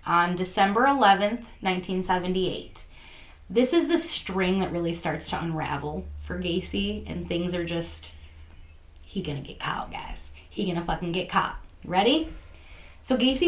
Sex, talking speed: female, 140 wpm